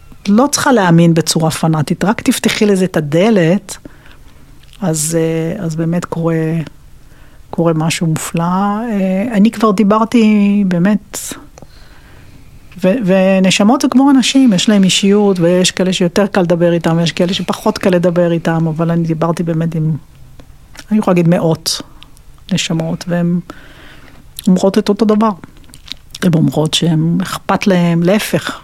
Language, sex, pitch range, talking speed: Hebrew, female, 165-210 Hz, 130 wpm